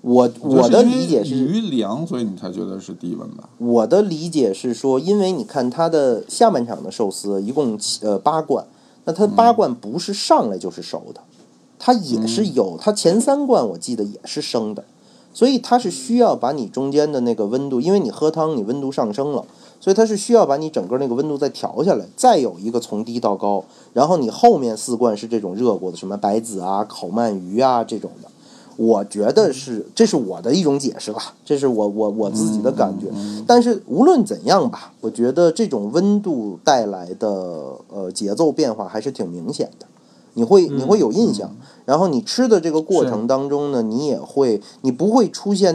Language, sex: Chinese, male